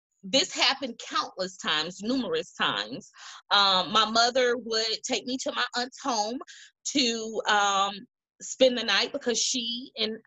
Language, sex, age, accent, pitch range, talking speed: English, female, 20-39, American, 205-275 Hz, 140 wpm